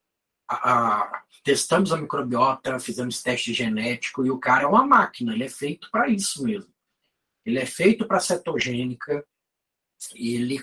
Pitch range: 130-210 Hz